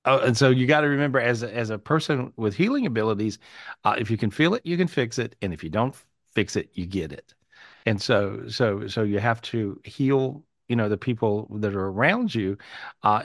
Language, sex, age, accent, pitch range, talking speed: English, male, 50-69, American, 105-125 Hz, 225 wpm